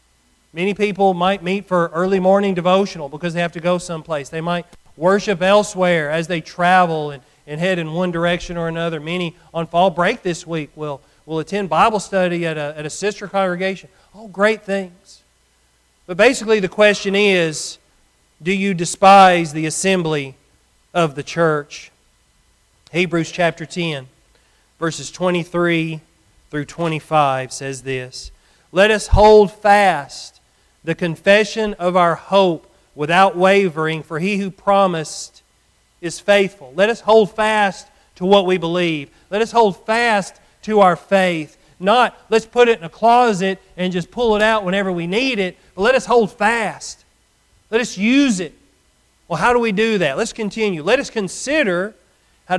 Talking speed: 160 wpm